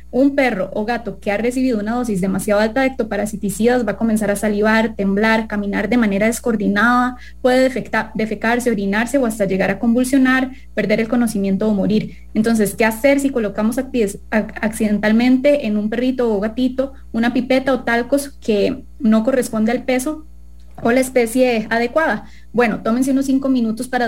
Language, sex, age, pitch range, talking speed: English, female, 20-39, 210-260 Hz, 165 wpm